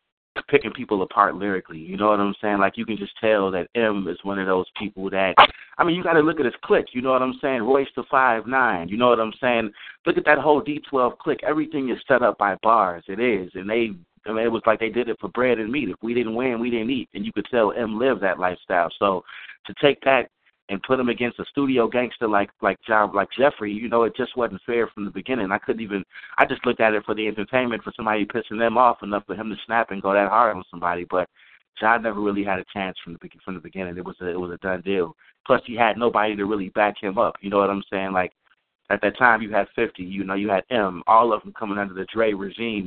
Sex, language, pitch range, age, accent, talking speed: male, English, 100-120 Hz, 30-49, American, 270 wpm